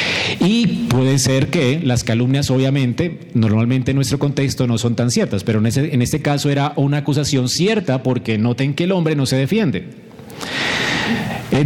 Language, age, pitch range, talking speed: Spanish, 40-59, 120-155 Hz, 170 wpm